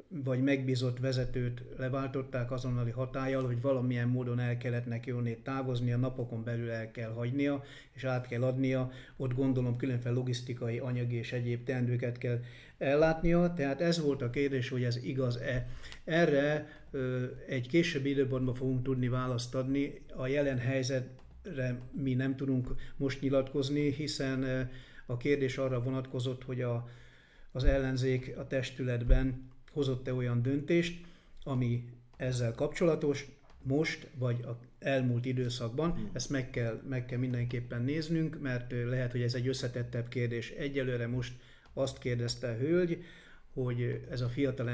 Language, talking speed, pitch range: Hungarian, 135 wpm, 120-135 Hz